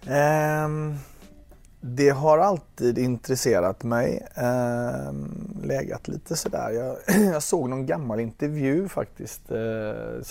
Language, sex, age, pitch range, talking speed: Swedish, male, 30-49, 110-135 Hz, 105 wpm